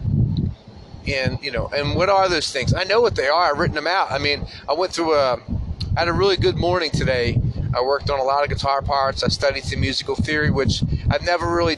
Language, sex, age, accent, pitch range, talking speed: English, male, 30-49, American, 115-155 Hz, 240 wpm